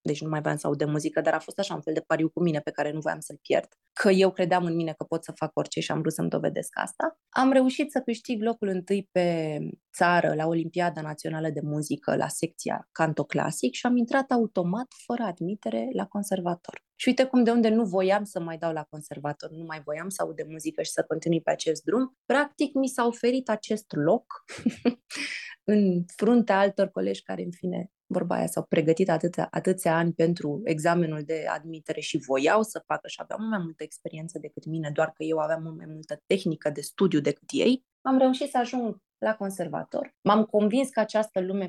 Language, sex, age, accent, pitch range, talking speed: Romanian, female, 20-39, native, 160-210 Hz, 210 wpm